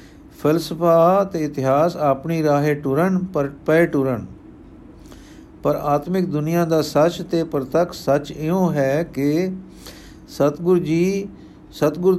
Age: 50-69